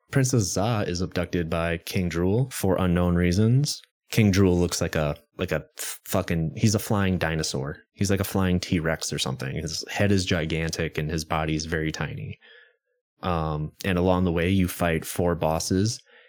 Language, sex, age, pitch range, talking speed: English, male, 20-39, 85-110 Hz, 180 wpm